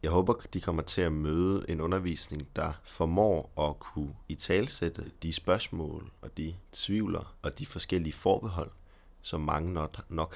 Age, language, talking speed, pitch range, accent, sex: 30-49, Danish, 160 wpm, 75-90 Hz, native, male